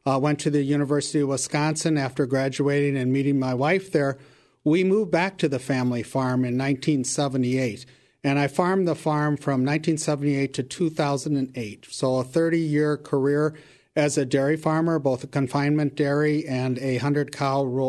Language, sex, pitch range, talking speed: English, male, 130-150 Hz, 160 wpm